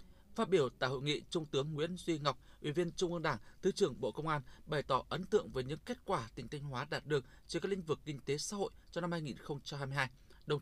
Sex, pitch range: male, 135-180 Hz